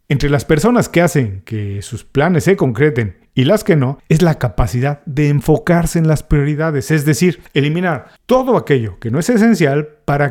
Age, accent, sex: 40-59, Mexican, male